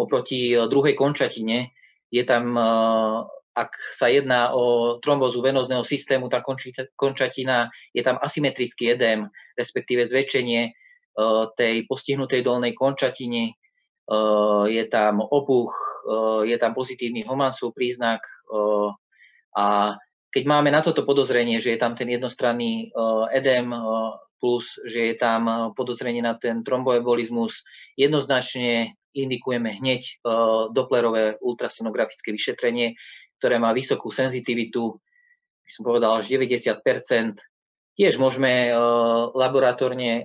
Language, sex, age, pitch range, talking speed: Slovak, male, 20-39, 115-130 Hz, 105 wpm